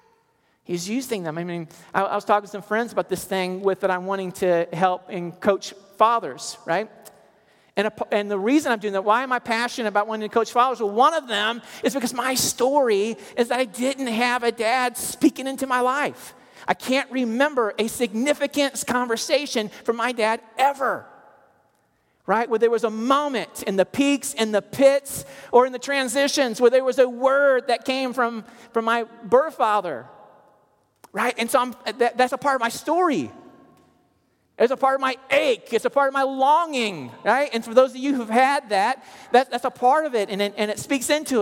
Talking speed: 205 wpm